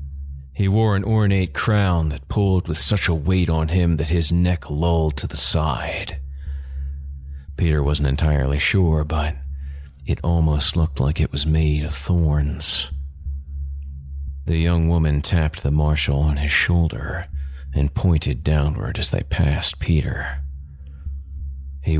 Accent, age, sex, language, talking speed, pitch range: American, 40-59, male, English, 140 wpm, 70-85 Hz